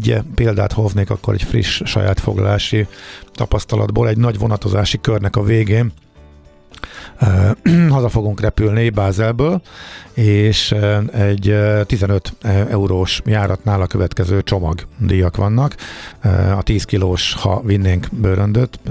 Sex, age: male, 50-69